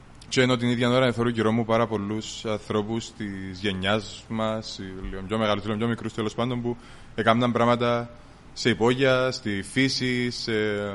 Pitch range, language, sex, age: 110-130 Hz, Greek, male, 20-39